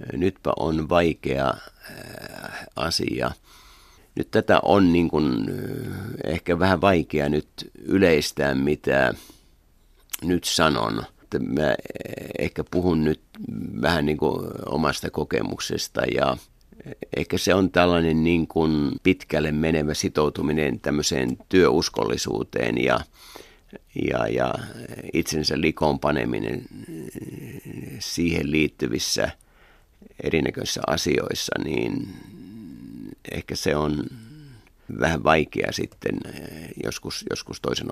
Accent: native